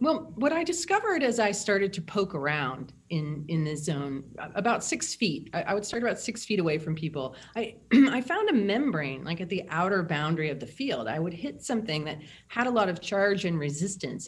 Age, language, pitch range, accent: 30-49, English, 150-210 Hz, American